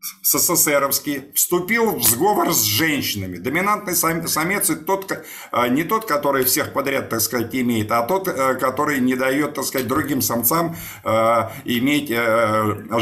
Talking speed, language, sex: 125 wpm, Russian, male